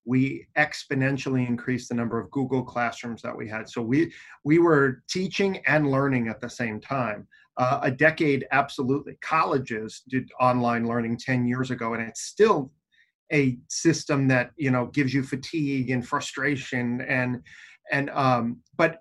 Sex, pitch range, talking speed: male, 125-150 Hz, 160 wpm